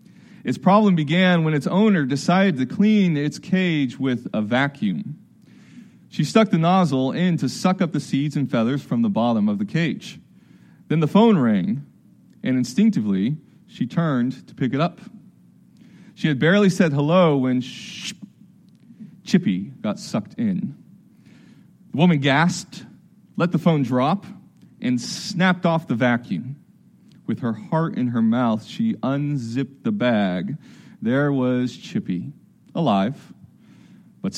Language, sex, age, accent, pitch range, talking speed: English, male, 30-49, American, 145-205 Hz, 140 wpm